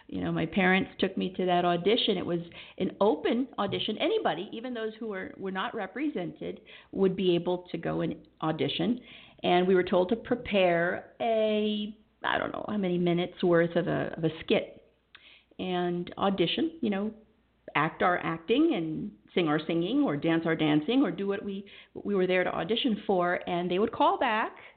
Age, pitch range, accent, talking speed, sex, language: 50-69, 175-235 Hz, American, 190 wpm, female, English